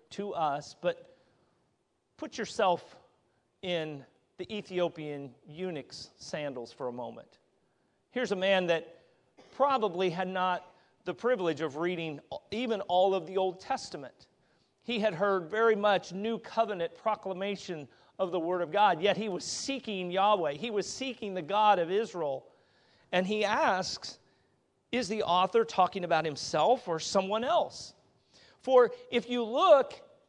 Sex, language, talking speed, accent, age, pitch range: male, English, 140 wpm, American, 40-59, 175-225 Hz